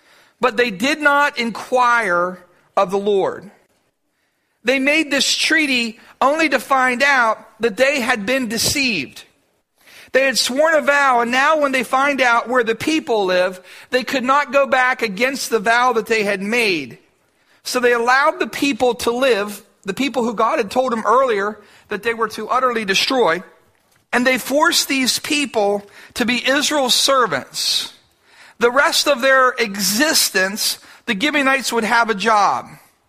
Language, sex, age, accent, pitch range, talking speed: English, male, 50-69, American, 225-270 Hz, 160 wpm